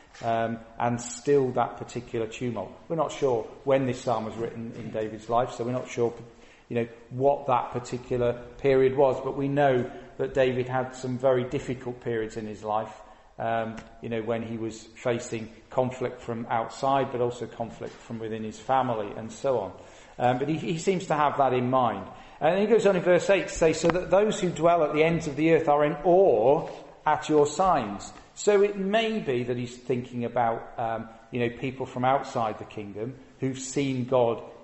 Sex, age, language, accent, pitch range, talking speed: male, 40-59, English, British, 120-145 Hz, 200 wpm